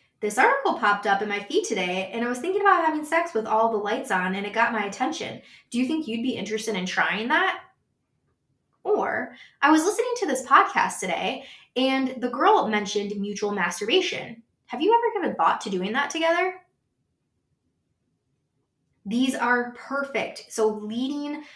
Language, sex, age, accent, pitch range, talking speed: English, female, 20-39, American, 205-270 Hz, 175 wpm